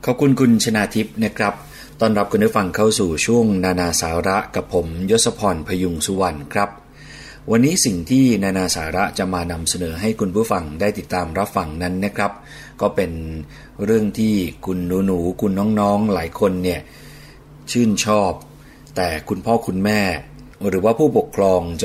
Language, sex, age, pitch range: Thai, male, 30-49, 90-115 Hz